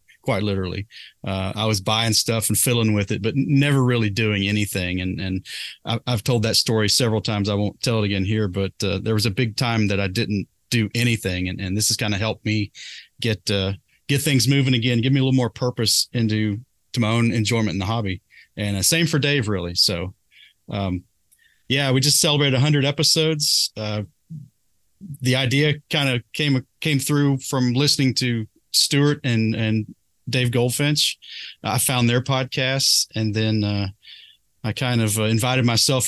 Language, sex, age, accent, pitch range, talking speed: English, male, 30-49, American, 105-130 Hz, 190 wpm